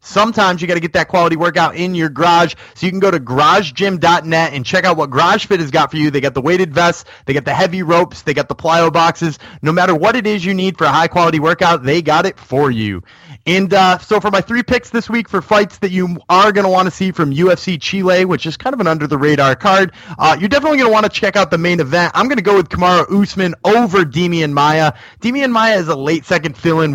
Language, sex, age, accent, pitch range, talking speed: English, male, 30-49, American, 140-185 Hz, 265 wpm